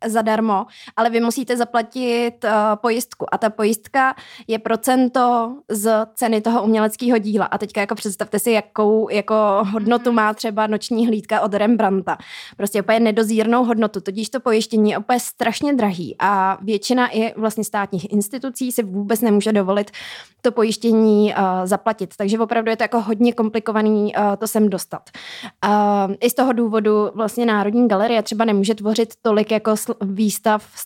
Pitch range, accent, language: 210-235 Hz, native, Czech